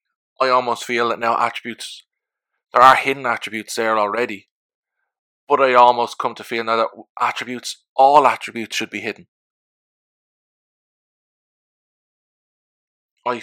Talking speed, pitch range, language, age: 120 wpm, 110-125 Hz, English, 20-39